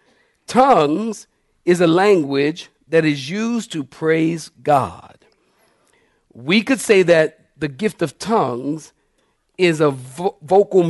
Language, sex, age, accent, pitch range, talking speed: English, male, 50-69, American, 140-185 Hz, 115 wpm